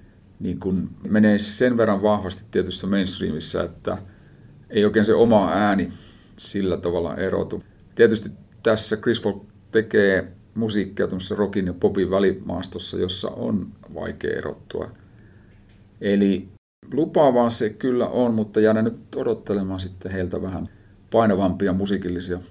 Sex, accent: male, native